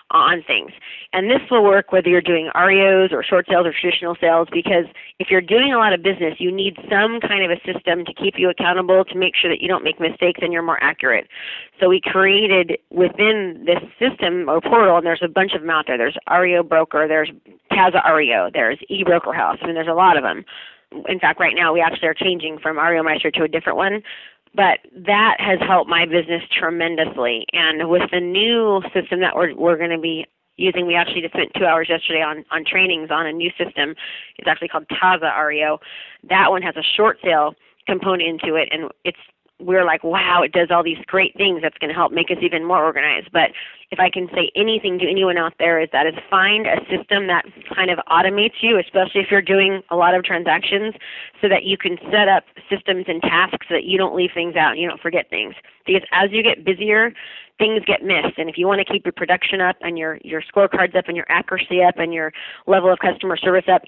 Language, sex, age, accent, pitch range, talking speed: English, female, 30-49, American, 165-190 Hz, 230 wpm